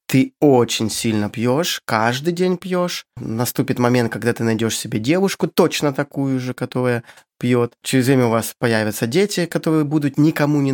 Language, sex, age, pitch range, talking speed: Russian, male, 20-39, 110-145 Hz, 160 wpm